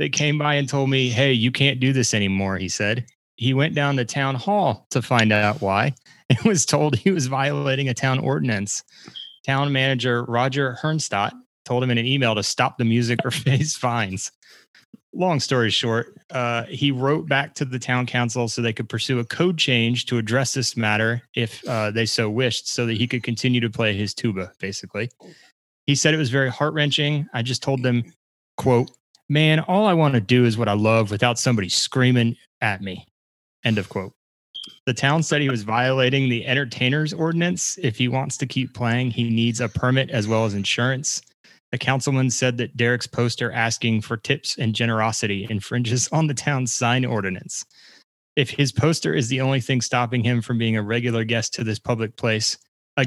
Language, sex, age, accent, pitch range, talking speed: English, male, 30-49, American, 115-135 Hz, 195 wpm